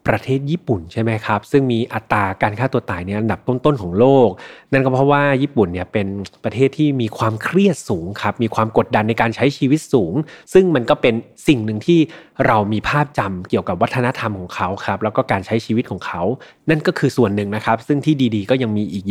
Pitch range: 110-150 Hz